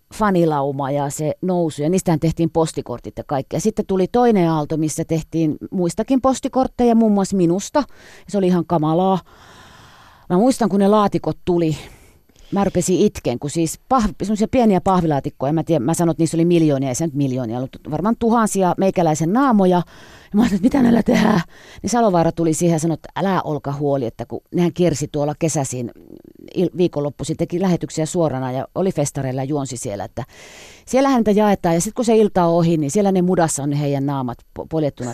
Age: 30-49